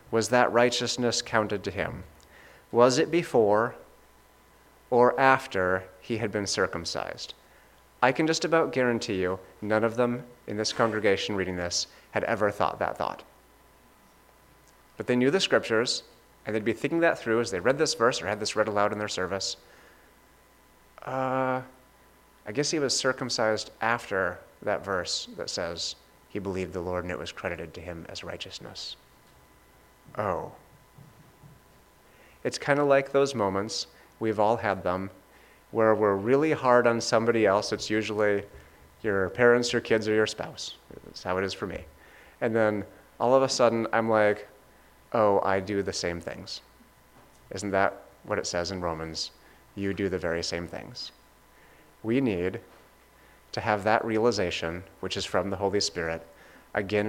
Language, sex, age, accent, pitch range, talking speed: English, male, 30-49, American, 95-120 Hz, 160 wpm